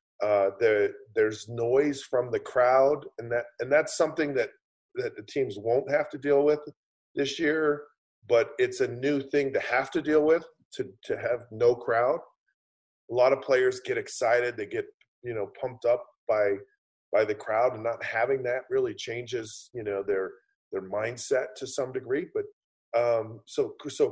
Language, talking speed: English, 180 wpm